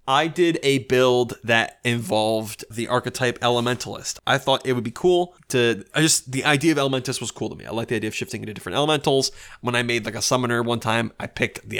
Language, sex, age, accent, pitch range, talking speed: English, male, 20-39, American, 115-145 Hz, 235 wpm